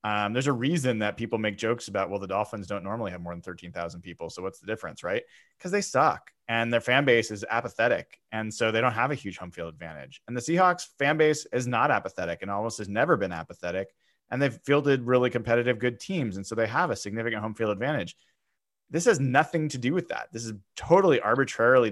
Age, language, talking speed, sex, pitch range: 30-49, English, 230 wpm, male, 100-135 Hz